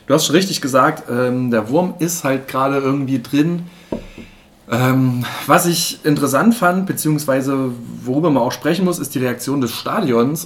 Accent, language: German, German